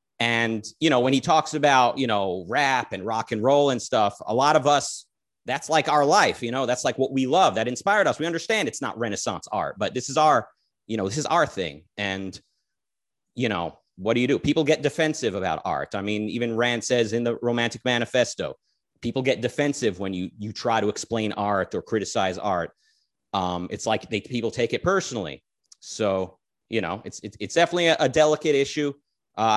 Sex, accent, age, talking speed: male, American, 30-49, 210 wpm